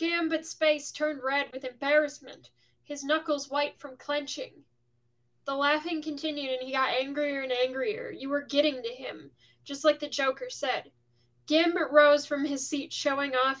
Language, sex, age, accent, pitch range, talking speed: English, female, 10-29, American, 255-300 Hz, 165 wpm